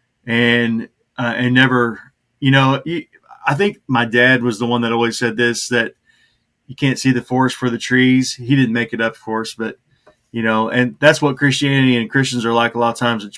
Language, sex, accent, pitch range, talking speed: English, male, American, 120-135 Hz, 220 wpm